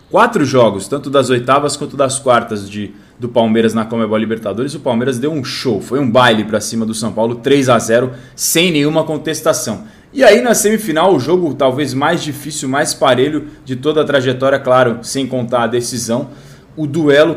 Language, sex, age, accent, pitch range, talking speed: Portuguese, male, 20-39, Brazilian, 130-155 Hz, 185 wpm